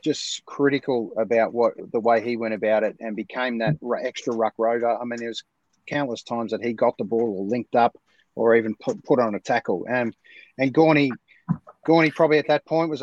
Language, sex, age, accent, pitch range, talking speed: English, male, 30-49, Australian, 115-140 Hz, 205 wpm